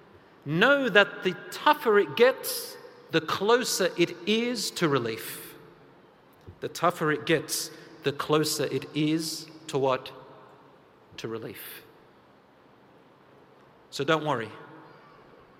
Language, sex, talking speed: English, male, 105 wpm